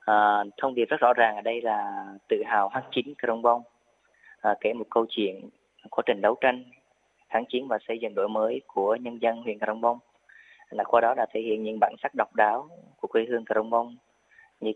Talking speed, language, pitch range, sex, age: 210 wpm, Vietnamese, 110-130 Hz, female, 20-39